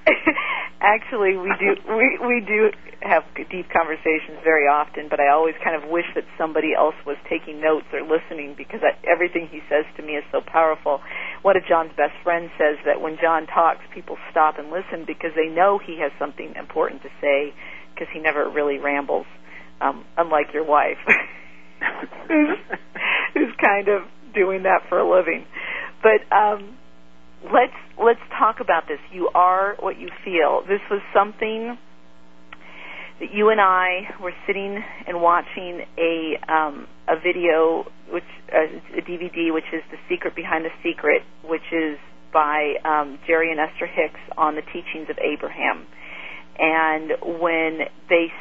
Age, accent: 50-69, American